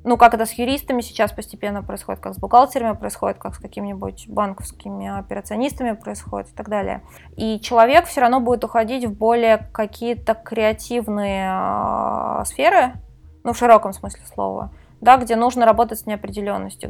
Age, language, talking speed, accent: 20-39, Russian, 155 wpm, native